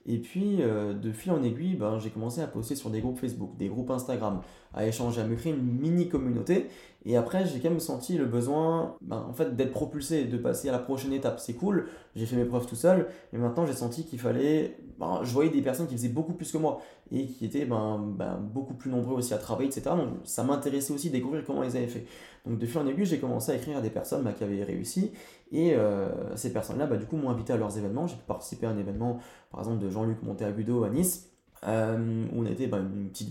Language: French